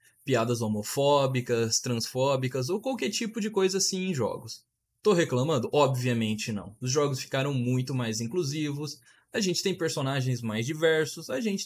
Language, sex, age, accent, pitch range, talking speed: Portuguese, male, 20-39, Brazilian, 120-200 Hz, 150 wpm